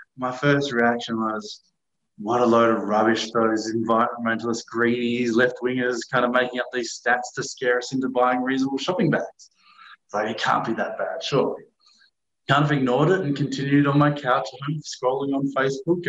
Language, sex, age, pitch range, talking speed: English, male, 20-39, 115-135 Hz, 170 wpm